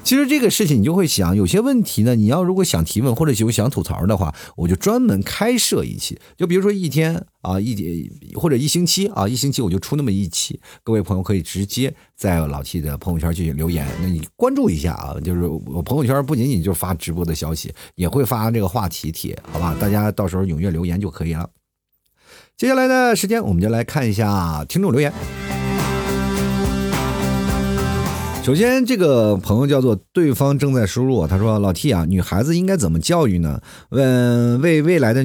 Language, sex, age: Chinese, male, 50-69